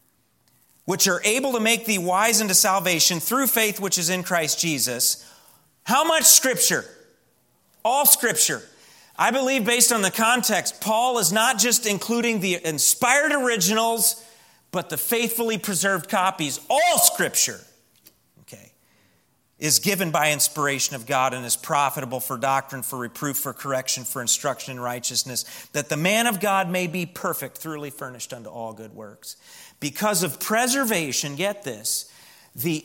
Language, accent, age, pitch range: English, American, 40-59, 140-225 Hz